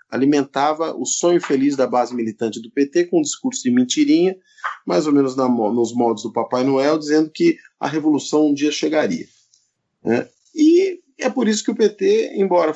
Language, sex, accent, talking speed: Portuguese, male, Brazilian, 185 wpm